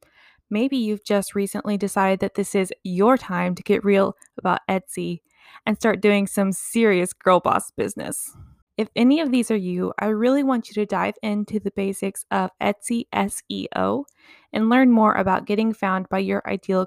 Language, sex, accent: English, female, American